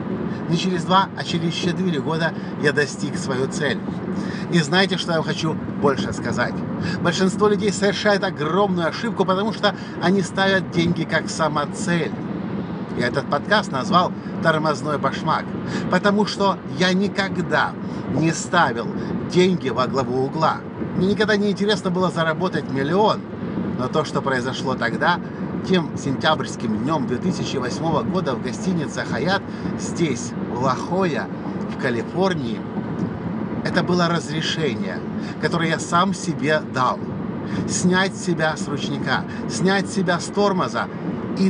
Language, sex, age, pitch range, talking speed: Russian, male, 50-69, 170-200 Hz, 125 wpm